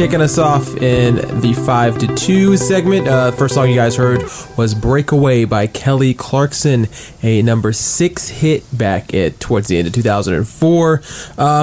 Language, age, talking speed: English, 20-39, 160 wpm